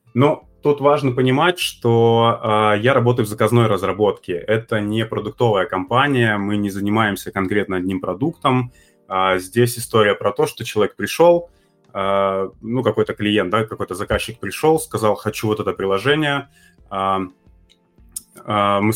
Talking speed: 125 wpm